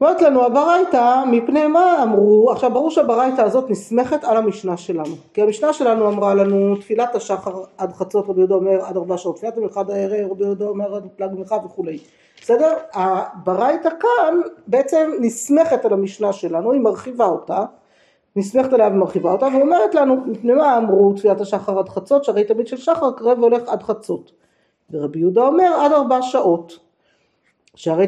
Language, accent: Hebrew, native